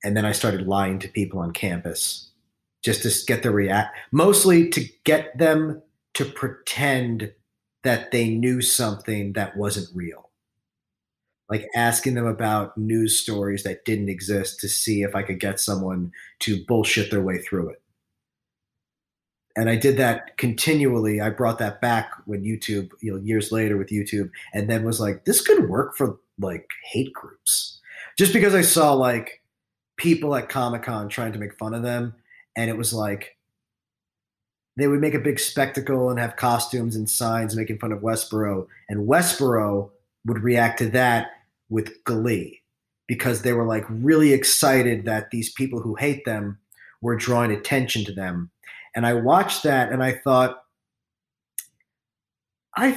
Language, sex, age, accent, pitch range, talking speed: English, male, 30-49, American, 105-130 Hz, 160 wpm